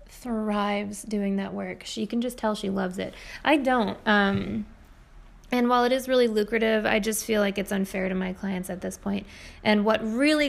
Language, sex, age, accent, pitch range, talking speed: English, female, 20-39, American, 195-230 Hz, 205 wpm